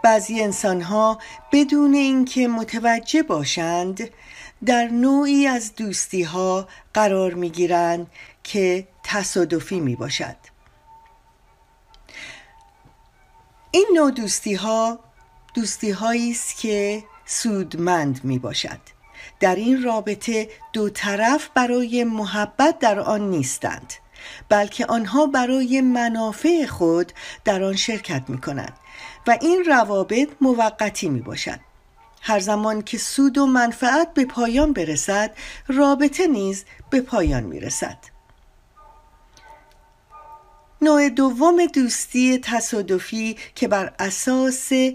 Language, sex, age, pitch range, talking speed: Persian, female, 40-59, 195-265 Hz, 90 wpm